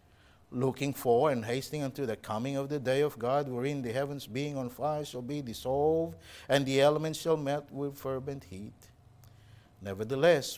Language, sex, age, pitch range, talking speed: English, male, 50-69, 115-145 Hz, 170 wpm